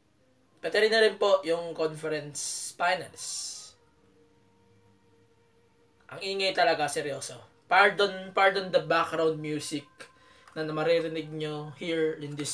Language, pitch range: English, 140-185 Hz